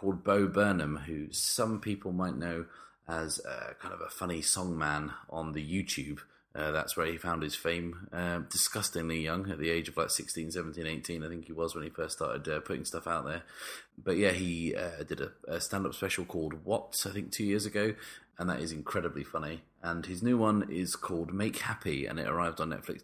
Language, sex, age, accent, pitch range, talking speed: English, male, 30-49, British, 80-95 Hz, 220 wpm